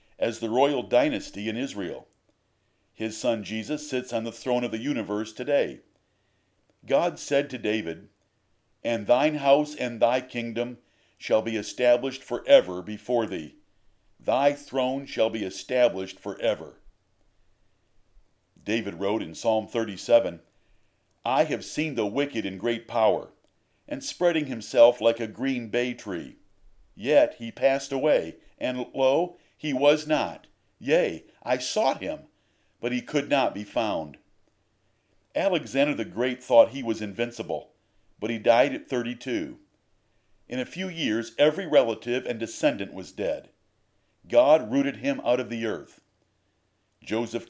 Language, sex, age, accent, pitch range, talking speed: English, male, 50-69, American, 110-135 Hz, 140 wpm